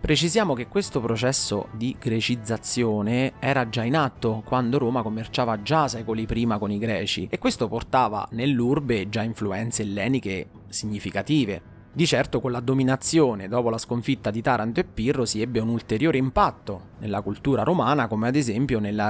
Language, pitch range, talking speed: Italian, 110-145 Hz, 160 wpm